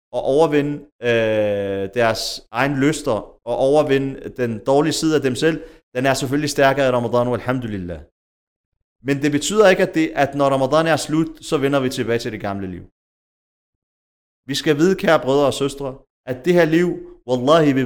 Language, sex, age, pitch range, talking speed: Danish, male, 30-49, 125-150 Hz, 180 wpm